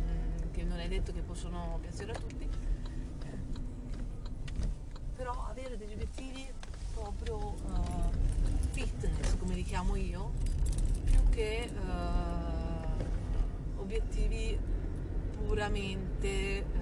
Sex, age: female, 40-59